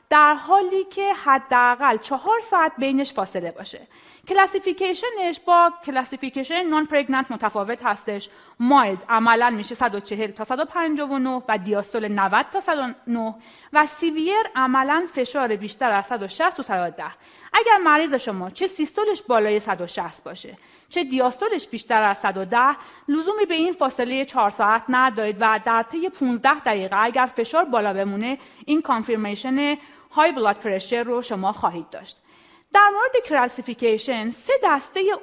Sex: female